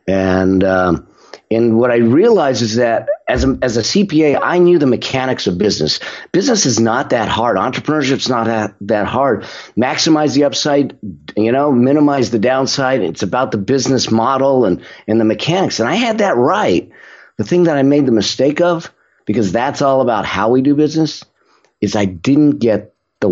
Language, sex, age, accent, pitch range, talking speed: English, male, 50-69, American, 95-135 Hz, 185 wpm